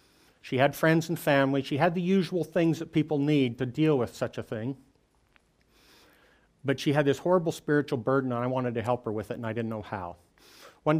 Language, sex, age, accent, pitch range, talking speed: English, male, 50-69, American, 120-155 Hz, 220 wpm